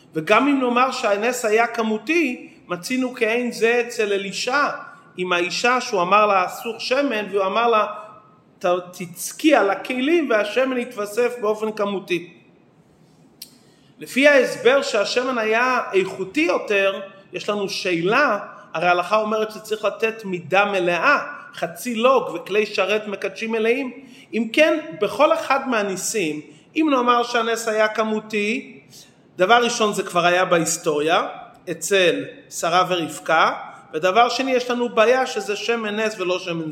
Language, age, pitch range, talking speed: English, 30-49, 185-240 Hz, 125 wpm